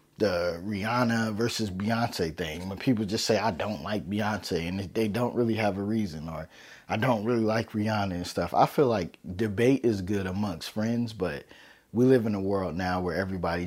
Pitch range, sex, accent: 95-115 Hz, male, American